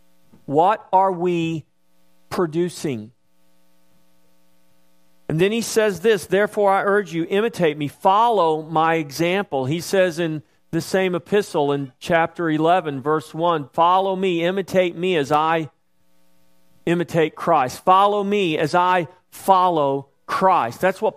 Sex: male